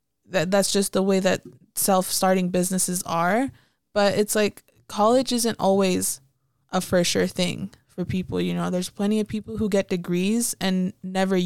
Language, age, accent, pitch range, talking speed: English, 20-39, American, 185-220 Hz, 160 wpm